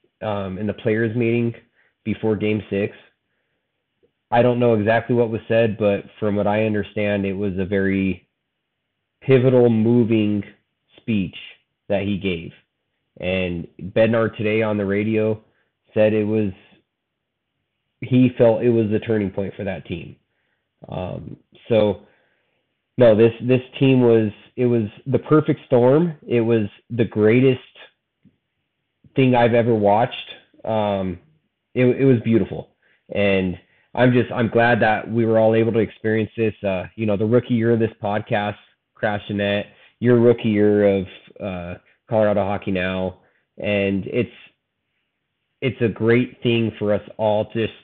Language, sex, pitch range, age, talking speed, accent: English, male, 100-115 Hz, 30-49, 145 wpm, American